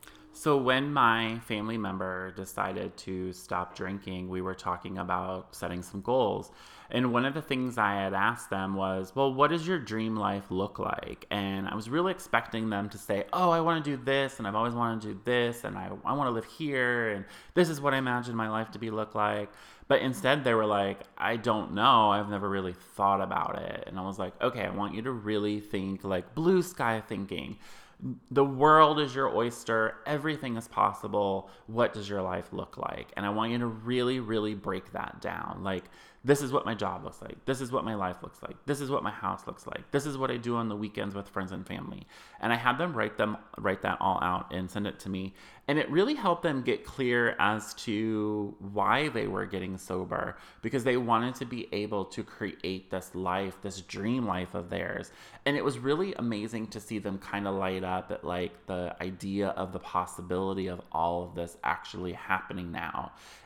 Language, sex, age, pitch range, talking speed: English, male, 30-49, 95-125 Hz, 215 wpm